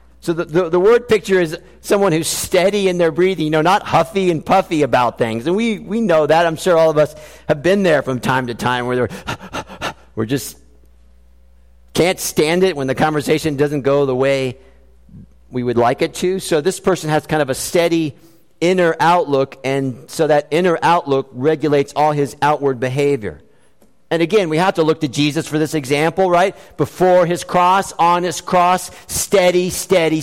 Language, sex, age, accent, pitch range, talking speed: English, male, 50-69, American, 150-190 Hz, 190 wpm